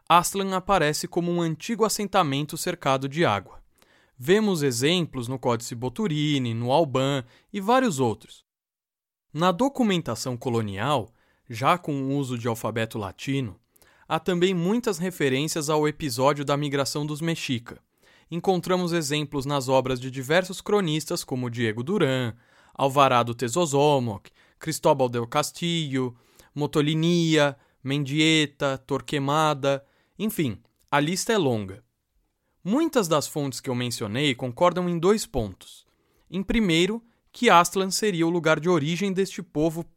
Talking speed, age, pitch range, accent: 125 wpm, 20-39, 130-185 Hz, Brazilian